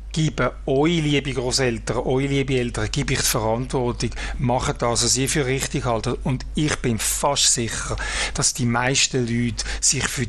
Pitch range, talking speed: 120-135 Hz, 175 wpm